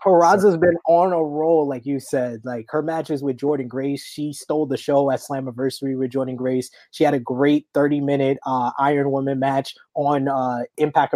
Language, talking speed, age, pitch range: English, 195 wpm, 20-39, 135-160 Hz